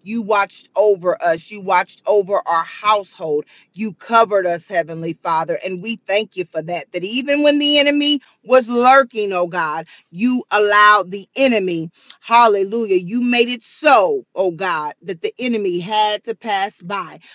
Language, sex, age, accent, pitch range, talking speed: English, female, 40-59, American, 210-265 Hz, 165 wpm